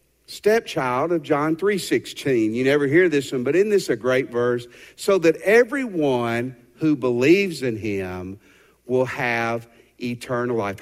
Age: 50-69